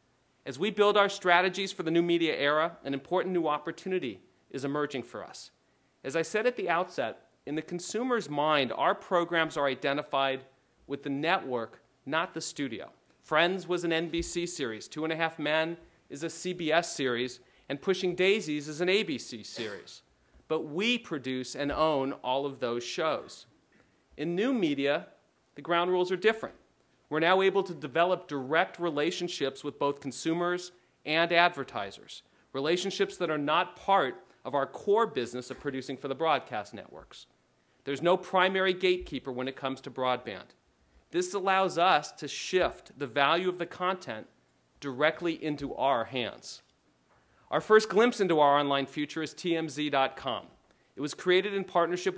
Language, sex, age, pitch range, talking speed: English, male, 40-59, 140-180 Hz, 160 wpm